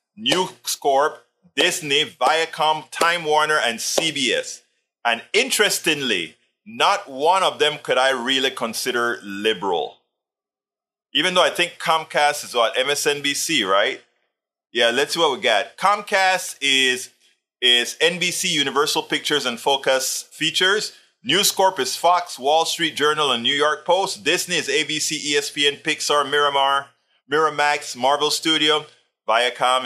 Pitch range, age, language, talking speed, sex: 140-175 Hz, 30-49, English, 130 wpm, male